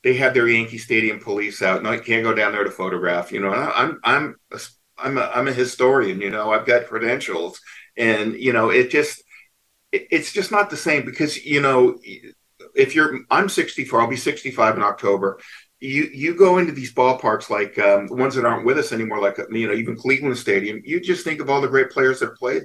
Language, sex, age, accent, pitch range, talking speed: English, male, 50-69, American, 110-150 Hz, 225 wpm